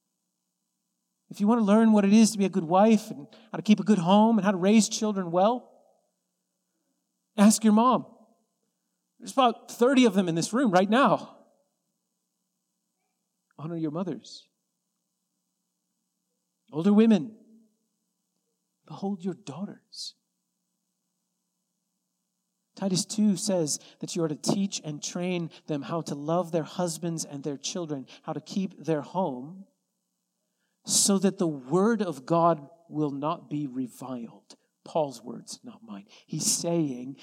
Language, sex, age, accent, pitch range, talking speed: English, male, 40-59, American, 150-205 Hz, 140 wpm